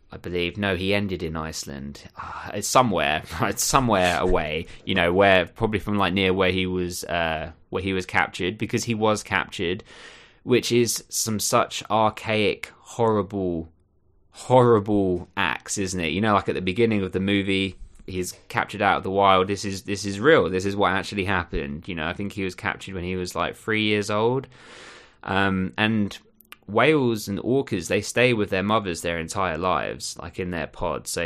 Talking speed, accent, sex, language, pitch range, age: 190 wpm, British, male, English, 90-110 Hz, 20-39